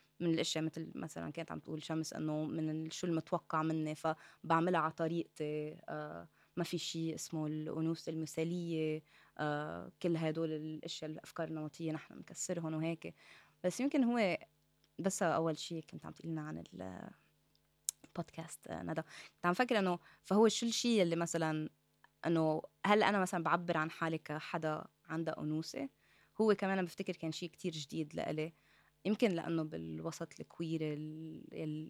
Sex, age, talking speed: female, 20-39, 145 wpm